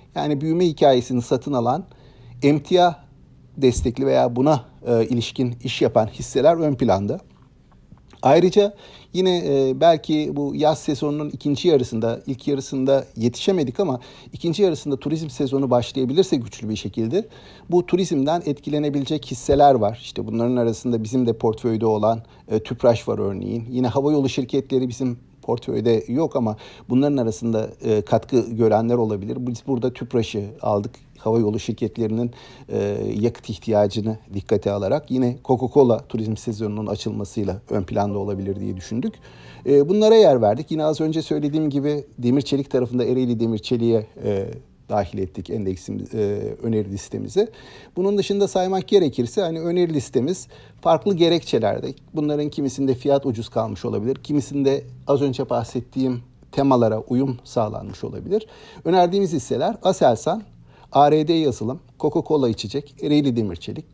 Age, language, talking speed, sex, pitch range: 50-69, Turkish, 130 wpm, male, 115-145 Hz